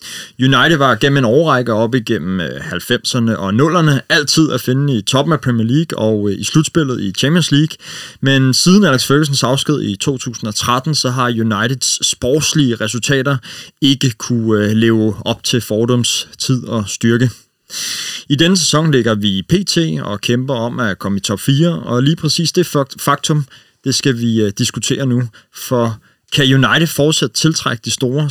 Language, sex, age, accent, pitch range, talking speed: Danish, male, 30-49, native, 115-150 Hz, 160 wpm